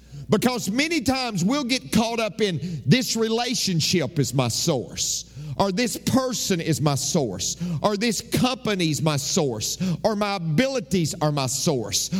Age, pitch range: 50-69, 135-215 Hz